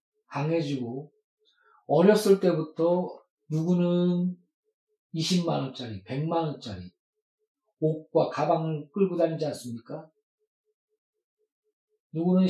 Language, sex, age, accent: Korean, male, 40-59, native